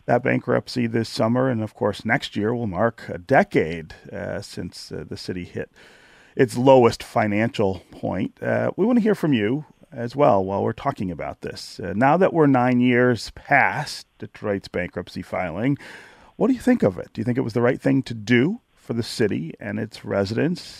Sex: male